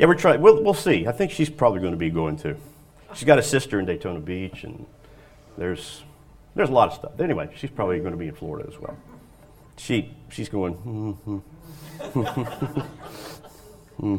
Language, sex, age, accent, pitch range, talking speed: English, male, 40-59, American, 95-150 Hz, 185 wpm